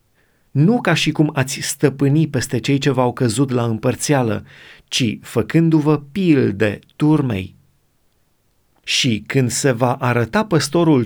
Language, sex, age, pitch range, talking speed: Romanian, male, 30-49, 110-155 Hz, 125 wpm